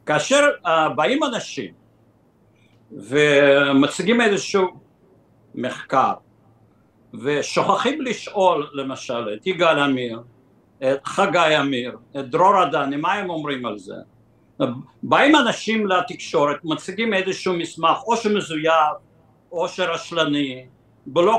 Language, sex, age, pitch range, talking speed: Hebrew, male, 60-79, 145-210 Hz, 95 wpm